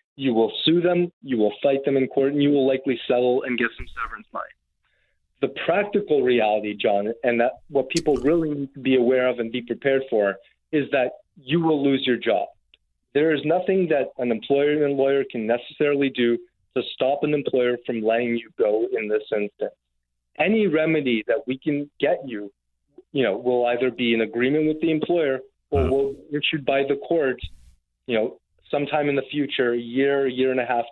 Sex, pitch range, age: male, 120-150 Hz, 30-49